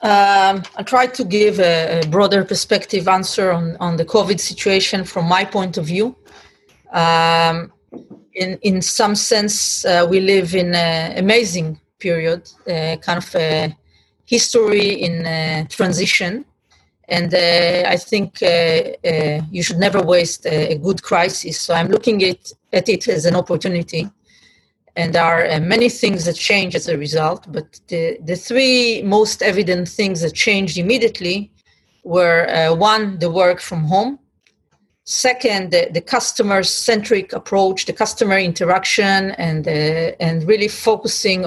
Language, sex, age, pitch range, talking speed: English, female, 30-49, 170-210 Hz, 150 wpm